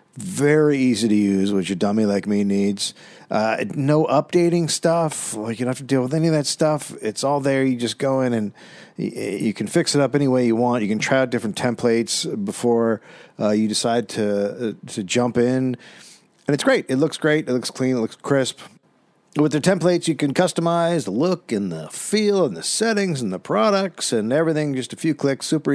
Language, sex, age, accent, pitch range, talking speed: English, male, 50-69, American, 120-155 Hz, 220 wpm